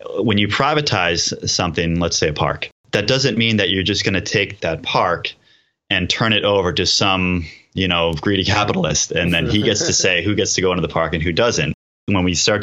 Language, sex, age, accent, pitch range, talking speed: English, male, 30-49, American, 80-105 Hz, 230 wpm